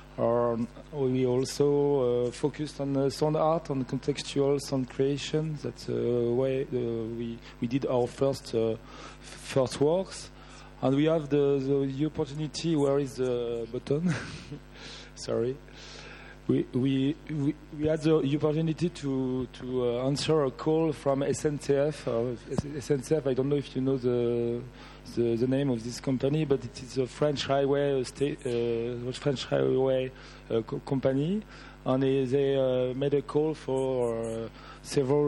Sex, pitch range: male, 125-145 Hz